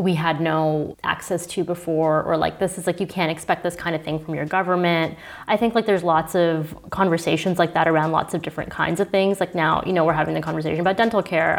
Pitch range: 165-205 Hz